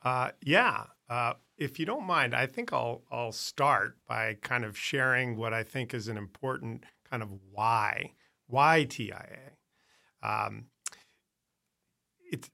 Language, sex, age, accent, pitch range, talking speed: English, male, 40-59, American, 115-135 Hz, 140 wpm